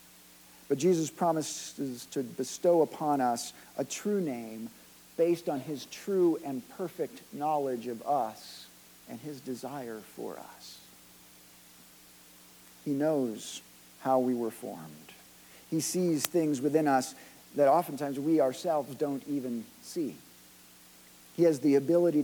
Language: English